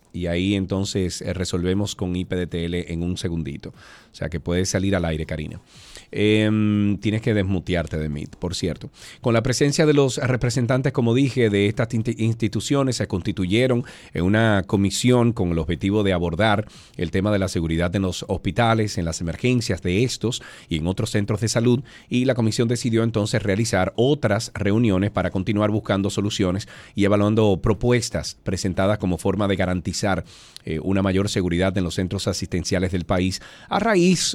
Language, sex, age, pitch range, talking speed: Spanish, male, 40-59, 95-120 Hz, 170 wpm